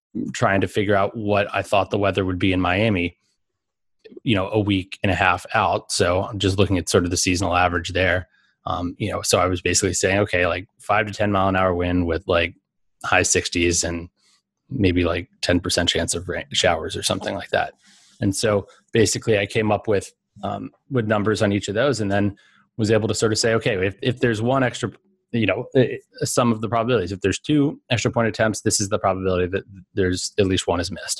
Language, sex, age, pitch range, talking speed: English, male, 20-39, 95-115 Hz, 225 wpm